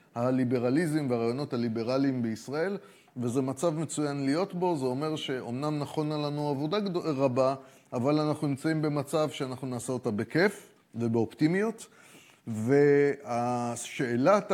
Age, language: 30-49, Hebrew